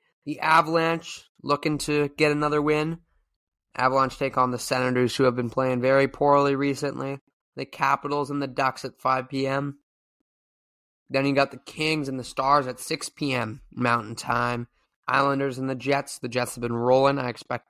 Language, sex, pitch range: English, male, 125-145 Hz